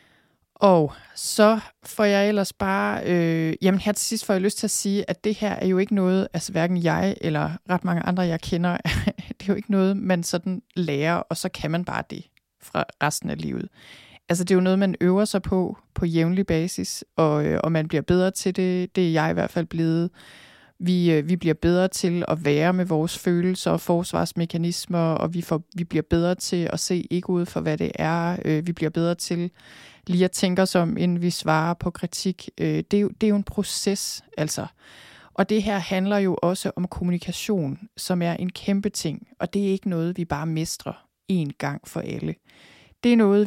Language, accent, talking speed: Danish, native, 210 wpm